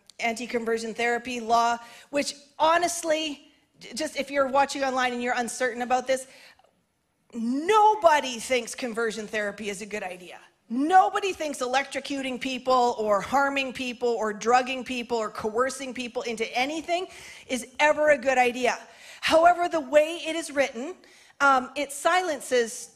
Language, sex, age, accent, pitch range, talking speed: English, female, 40-59, American, 235-285 Hz, 135 wpm